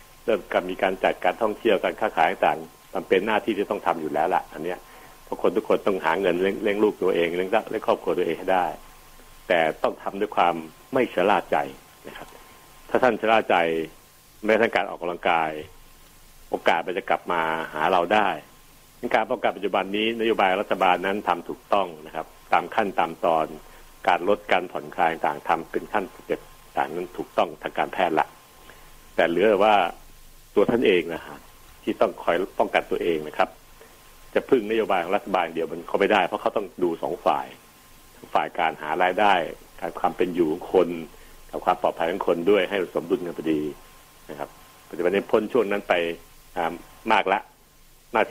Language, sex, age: Thai, male, 60-79